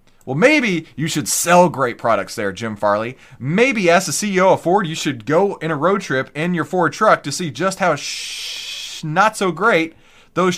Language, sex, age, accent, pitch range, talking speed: English, male, 30-49, American, 125-190 Hz, 200 wpm